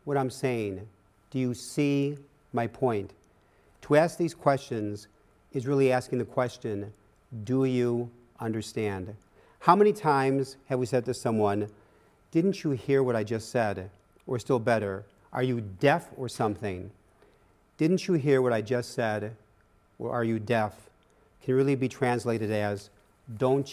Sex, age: male, 50-69